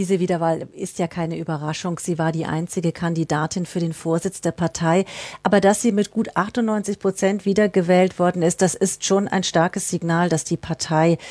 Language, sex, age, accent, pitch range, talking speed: German, female, 40-59, German, 165-195 Hz, 185 wpm